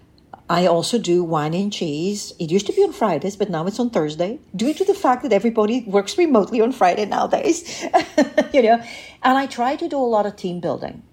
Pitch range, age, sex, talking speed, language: 150-205 Hz, 50-69, female, 215 wpm, English